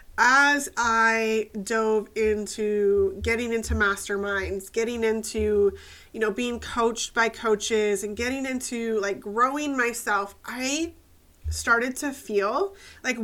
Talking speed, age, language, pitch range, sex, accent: 120 wpm, 20-39, English, 205-255 Hz, female, American